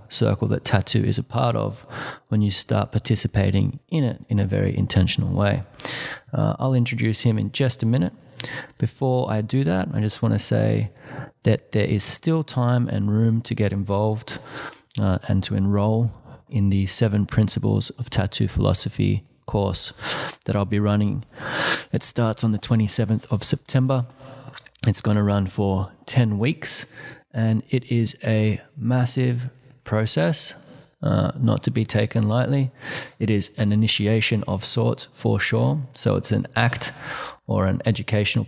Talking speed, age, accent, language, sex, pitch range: 160 wpm, 20-39, Australian, English, male, 105-130 Hz